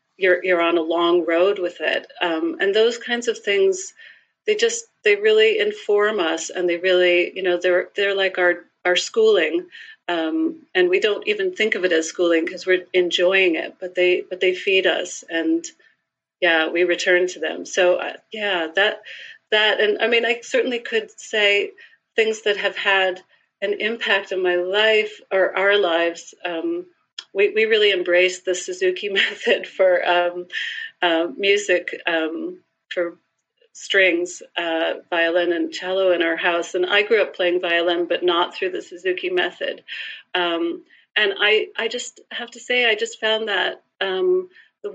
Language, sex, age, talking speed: English, female, 40-59, 170 wpm